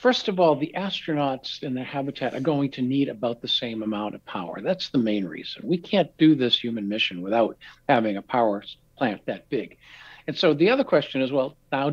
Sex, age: male, 60-79